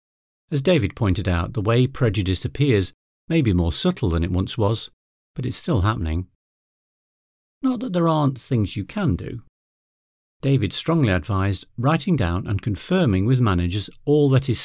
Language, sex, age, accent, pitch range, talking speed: English, male, 40-59, British, 95-135 Hz, 165 wpm